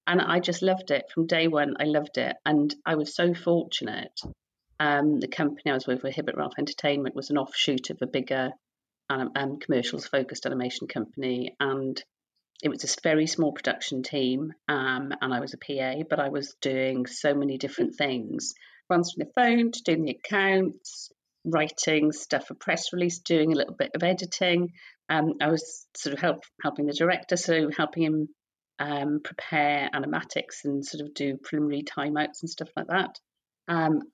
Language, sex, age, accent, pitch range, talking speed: English, female, 50-69, British, 145-175 Hz, 180 wpm